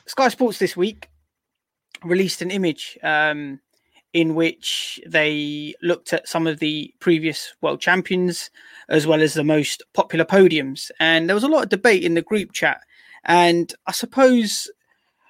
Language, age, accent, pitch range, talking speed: English, 20-39, British, 155-185 Hz, 155 wpm